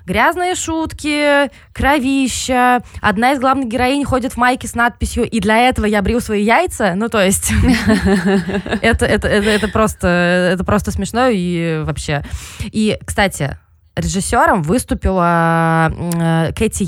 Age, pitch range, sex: 20-39, 175-245 Hz, female